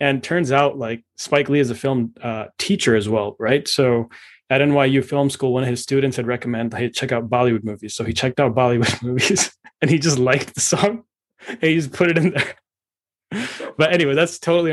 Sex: male